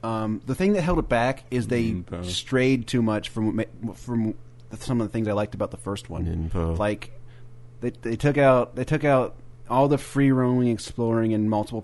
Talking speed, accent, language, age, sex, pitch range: 200 wpm, American, English, 30-49, male, 110-135 Hz